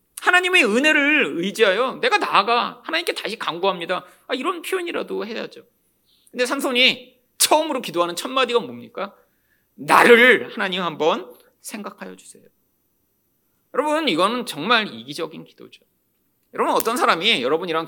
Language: Korean